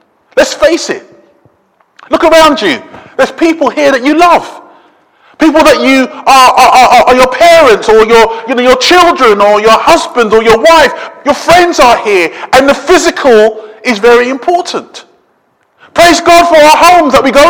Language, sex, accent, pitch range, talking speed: English, male, British, 185-295 Hz, 175 wpm